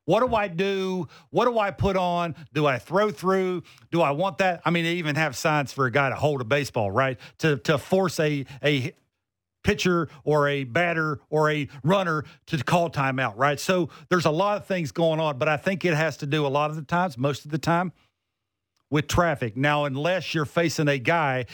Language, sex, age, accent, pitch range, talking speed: English, male, 50-69, American, 135-175 Hz, 220 wpm